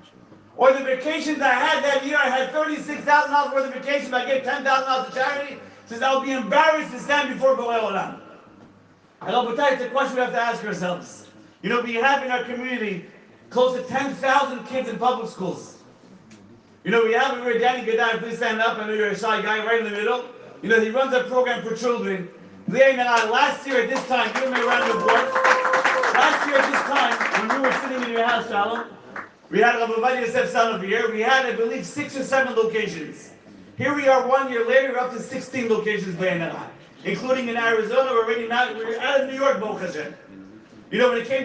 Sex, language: male, English